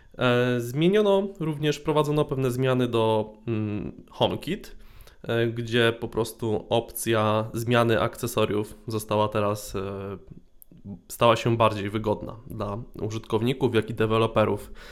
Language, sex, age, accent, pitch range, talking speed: Polish, male, 20-39, native, 105-135 Hz, 95 wpm